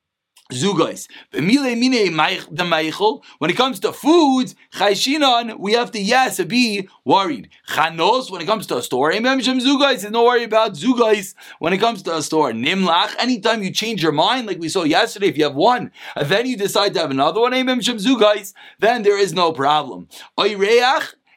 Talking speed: 175 wpm